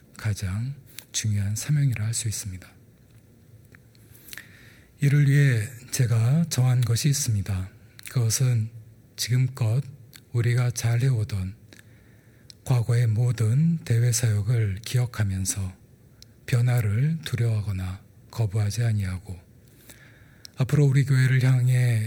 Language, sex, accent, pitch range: Korean, male, native, 110-130 Hz